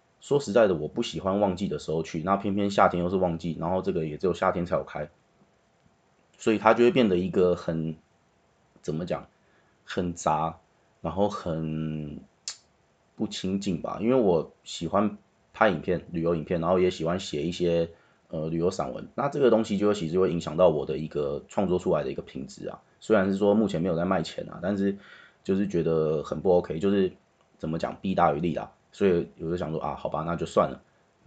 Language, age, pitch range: Chinese, 30-49, 85-110 Hz